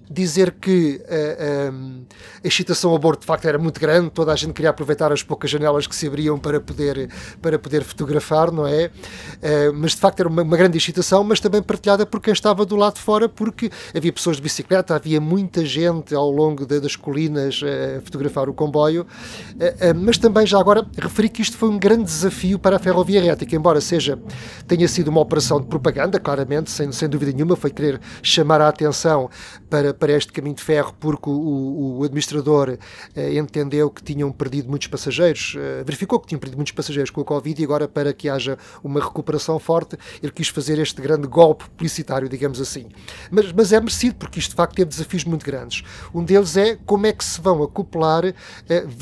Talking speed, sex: 205 wpm, male